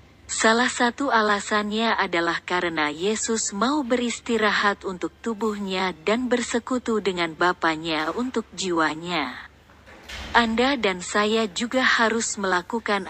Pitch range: 185-230 Hz